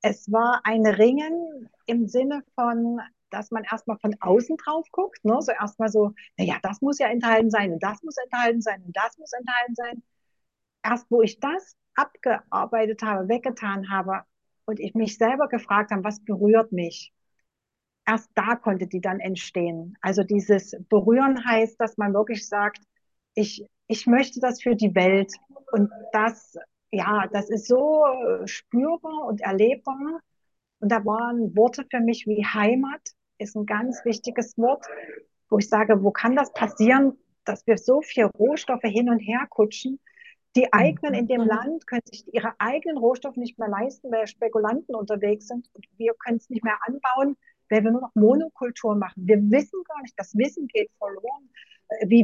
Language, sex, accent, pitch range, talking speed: German, female, German, 210-255 Hz, 170 wpm